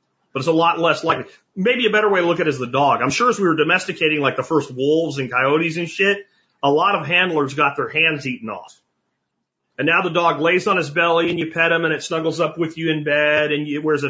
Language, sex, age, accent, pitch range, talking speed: English, male, 40-59, American, 145-215 Hz, 275 wpm